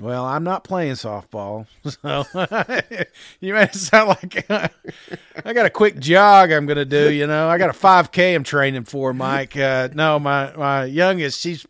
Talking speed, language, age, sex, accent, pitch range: 190 wpm, English, 40-59, male, American, 140-185 Hz